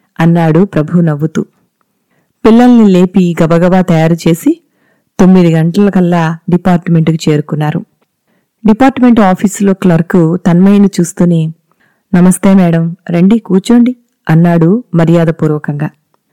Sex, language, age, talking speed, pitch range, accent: female, Telugu, 30-49, 80 wpm, 170-205 Hz, native